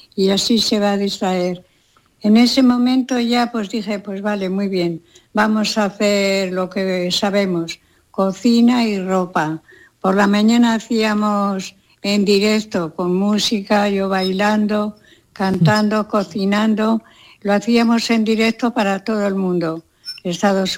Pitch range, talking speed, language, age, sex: 190-220 Hz, 135 wpm, Spanish, 60-79, female